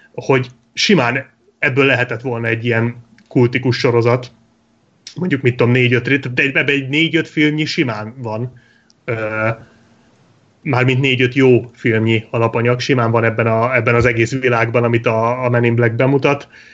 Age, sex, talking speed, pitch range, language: 30-49, male, 145 wpm, 120-145 Hz, Hungarian